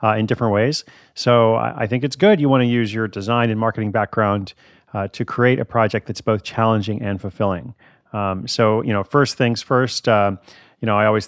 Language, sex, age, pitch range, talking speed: English, male, 40-59, 105-125 Hz, 220 wpm